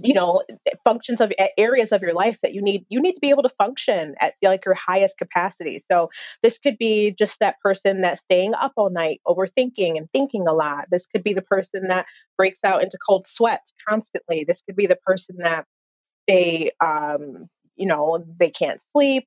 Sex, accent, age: female, American, 30-49